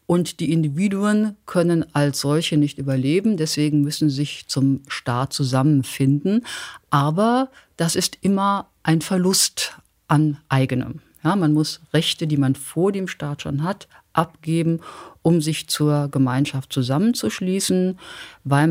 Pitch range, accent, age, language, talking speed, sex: 140-175 Hz, German, 50-69, German, 130 wpm, female